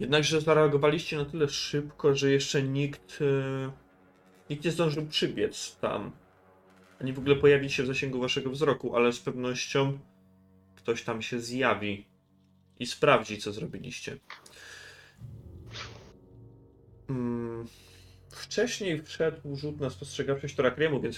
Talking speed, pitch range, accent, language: 110 wpm, 95-140 Hz, native, Polish